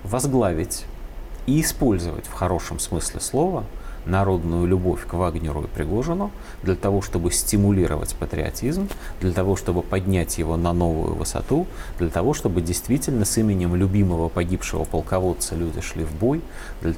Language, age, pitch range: Russian, 30-49, 85-115 Hz